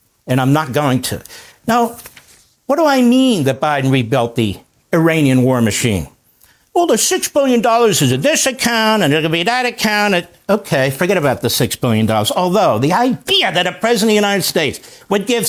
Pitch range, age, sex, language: 175-295 Hz, 50-69, male, English